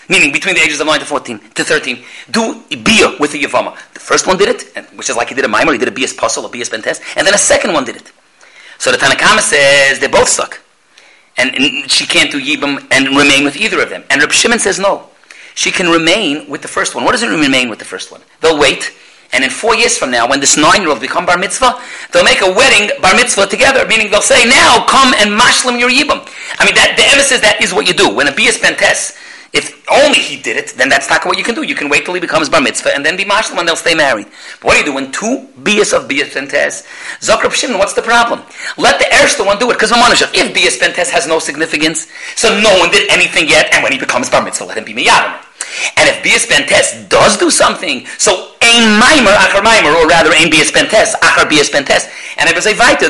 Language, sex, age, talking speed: English, male, 40-59, 255 wpm